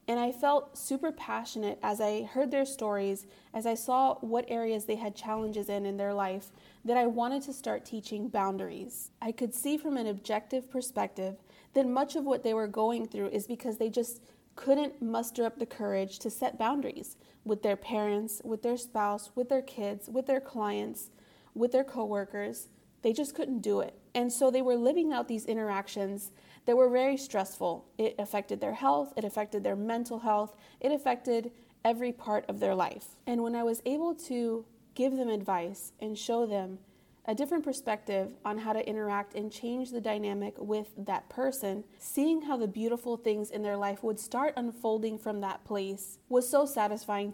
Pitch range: 205-250 Hz